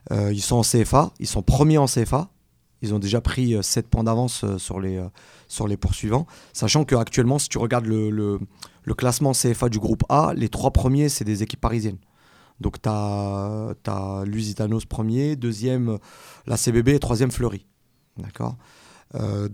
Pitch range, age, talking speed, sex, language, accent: 105-130 Hz, 30-49, 170 wpm, male, French, French